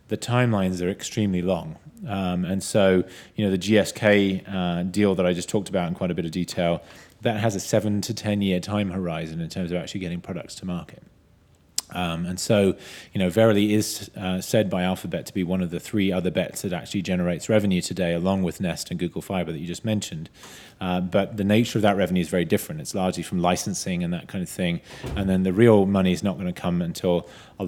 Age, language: 30-49, English